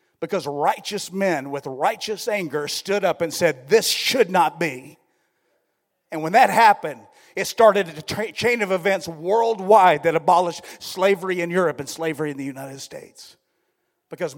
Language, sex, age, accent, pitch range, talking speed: English, male, 40-59, American, 145-185 Hz, 160 wpm